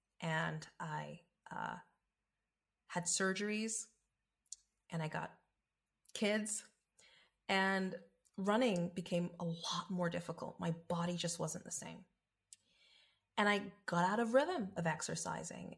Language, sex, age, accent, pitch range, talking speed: English, female, 30-49, American, 180-250 Hz, 115 wpm